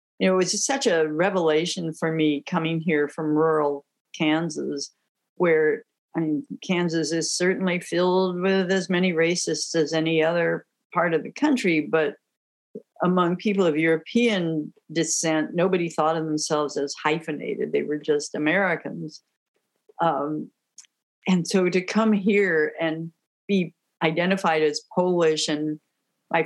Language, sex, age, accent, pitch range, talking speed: English, female, 50-69, American, 160-195 Hz, 135 wpm